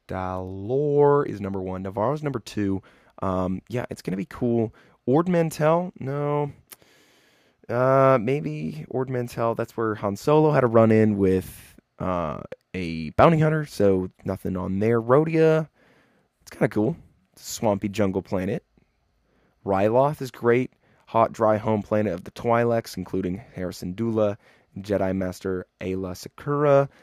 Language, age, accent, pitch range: English, 20-39, American, 95-125 Hz